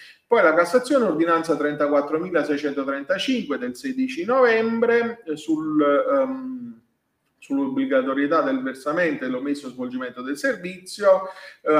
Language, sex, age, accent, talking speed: Italian, male, 40-59, native, 95 wpm